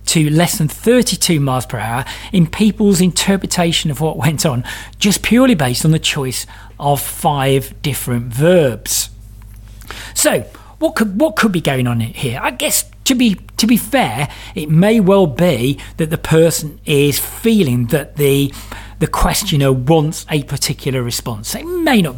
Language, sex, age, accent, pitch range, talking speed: English, male, 40-59, British, 115-180 Hz, 160 wpm